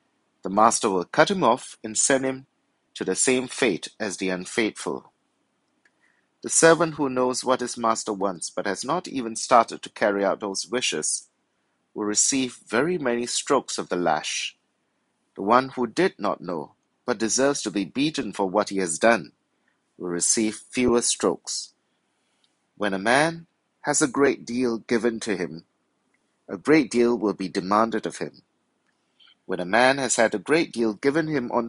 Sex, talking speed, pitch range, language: male, 170 wpm, 105-130 Hz, English